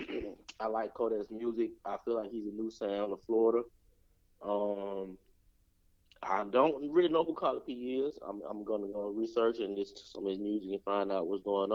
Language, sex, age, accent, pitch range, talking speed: English, male, 30-49, American, 100-155 Hz, 200 wpm